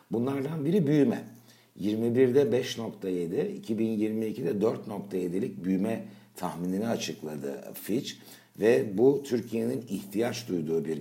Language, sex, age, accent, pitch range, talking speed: Turkish, male, 60-79, native, 90-115 Hz, 95 wpm